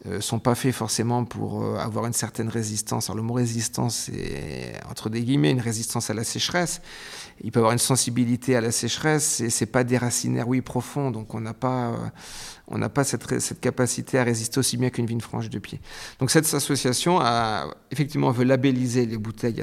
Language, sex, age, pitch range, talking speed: French, male, 40-59, 115-140 Hz, 210 wpm